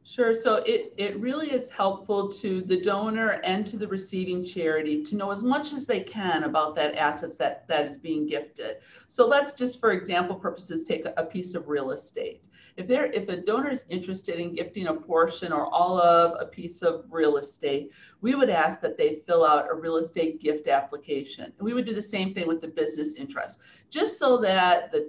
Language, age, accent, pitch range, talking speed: English, 50-69, American, 160-225 Hz, 210 wpm